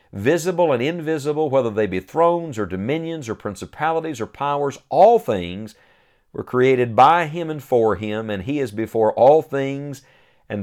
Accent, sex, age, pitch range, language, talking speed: American, male, 50-69, 105-135 Hz, English, 165 wpm